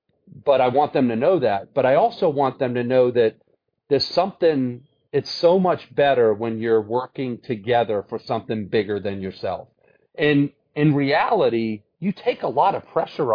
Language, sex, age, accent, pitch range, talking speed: English, male, 40-59, American, 115-140 Hz, 175 wpm